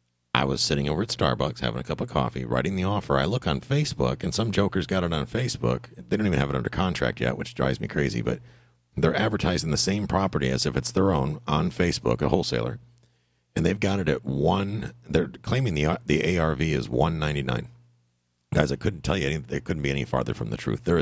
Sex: male